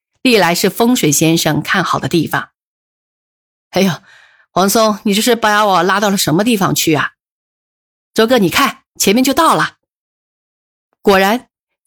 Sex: female